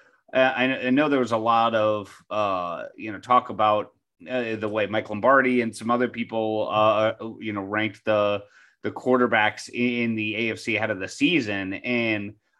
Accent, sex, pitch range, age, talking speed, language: American, male, 105-120 Hz, 30-49, 170 wpm, English